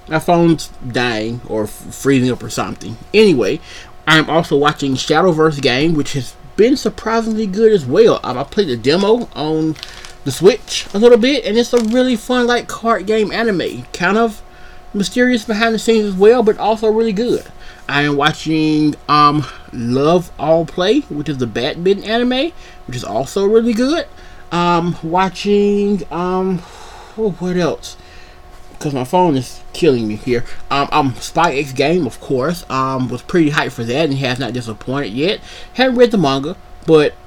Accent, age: American, 30-49